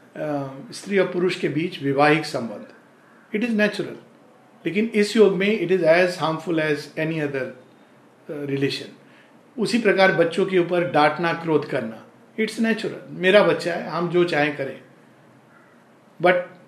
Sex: male